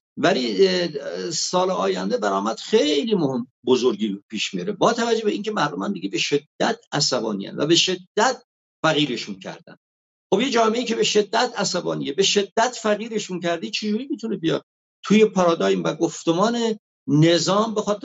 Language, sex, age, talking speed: English, male, 50-69, 145 wpm